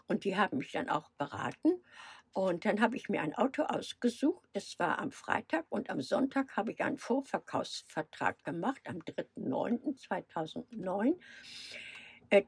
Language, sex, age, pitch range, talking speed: German, female, 60-79, 220-280 Hz, 140 wpm